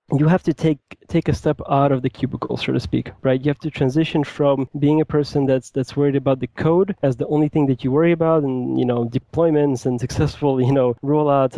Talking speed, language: 240 wpm, English